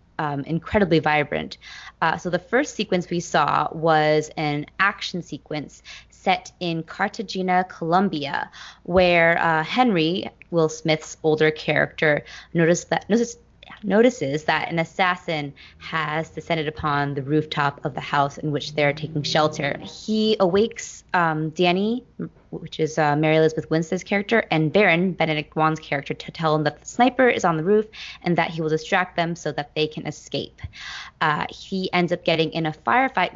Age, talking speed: 20-39, 165 wpm